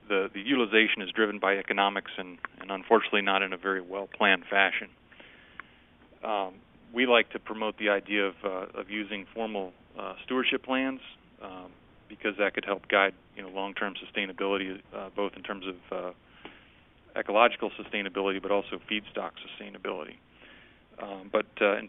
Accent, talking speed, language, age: American, 150 wpm, English, 30-49